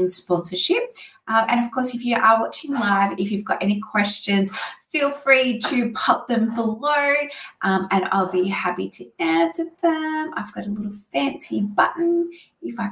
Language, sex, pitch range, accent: English, female, 180-240 Hz, Australian